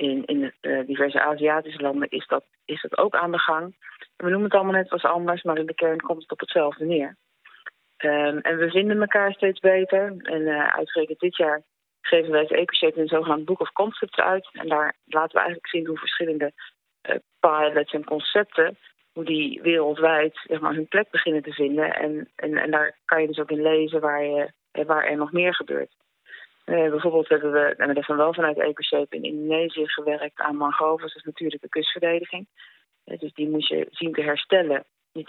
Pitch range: 150-175 Hz